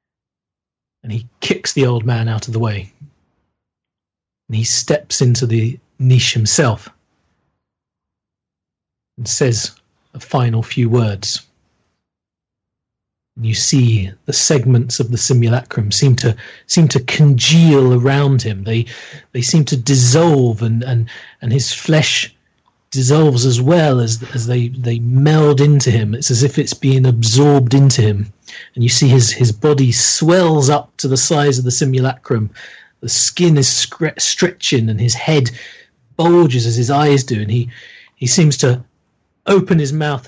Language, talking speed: English, 150 wpm